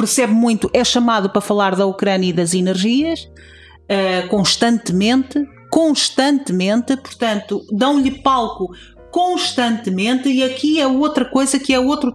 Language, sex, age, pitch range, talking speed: Portuguese, female, 40-59, 210-285 Hz, 130 wpm